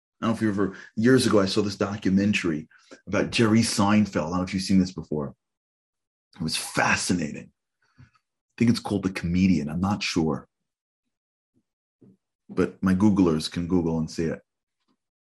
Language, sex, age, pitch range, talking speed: English, male, 30-49, 95-130 Hz, 170 wpm